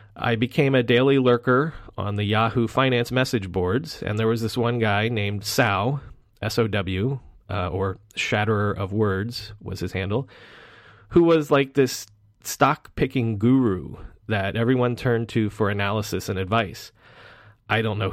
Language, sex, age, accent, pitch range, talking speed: English, male, 30-49, American, 105-125 Hz, 145 wpm